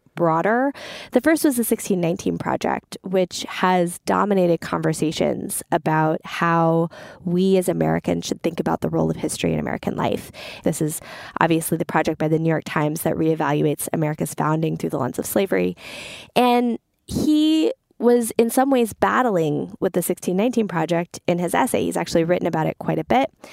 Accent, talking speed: American, 170 wpm